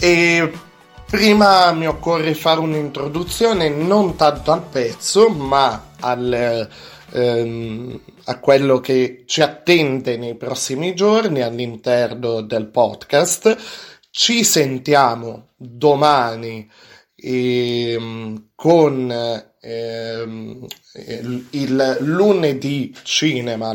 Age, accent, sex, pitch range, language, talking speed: 30-49, native, male, 120-155 Hz, Italian, 85 wpm